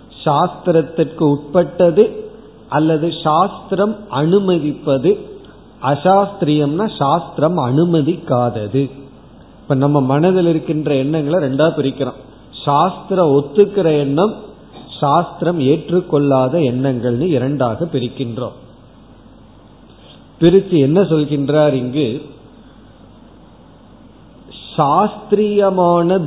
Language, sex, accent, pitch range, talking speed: Tamil, male, native, 140-180 Hz, 60 wpm